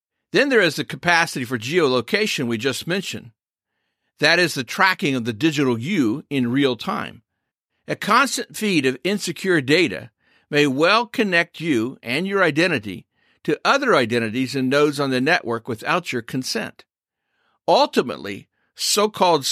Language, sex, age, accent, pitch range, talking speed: English, male, 50-69, American, 130-180 Hz, 145 wpm